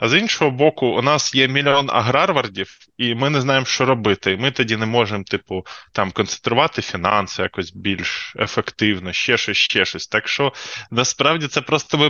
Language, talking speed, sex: Ukrainian, 180 wpm, male